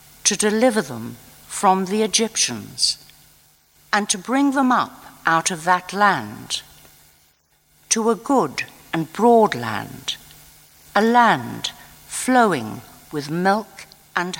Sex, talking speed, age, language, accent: female, 115 wpm, 60-79, English, British